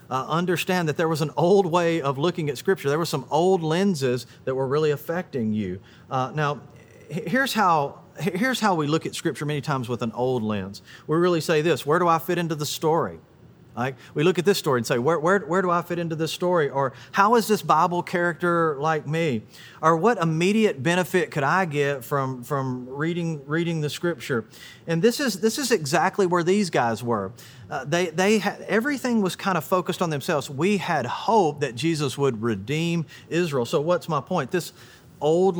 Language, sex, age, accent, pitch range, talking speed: English, male, 40-59, American, 125-175 Hz, 205 wpm